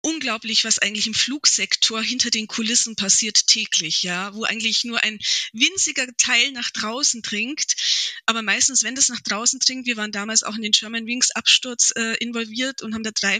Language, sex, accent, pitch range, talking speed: German, female, German, 200-235 Hz, 190 wpm